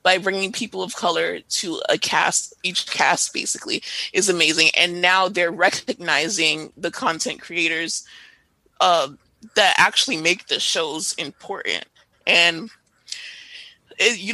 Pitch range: 170-210 Hz